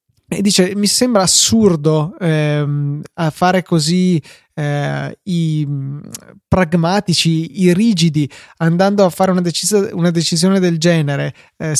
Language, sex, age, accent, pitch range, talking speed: Italian, male, 20-39, native, 150-185 Hz, 110 wpm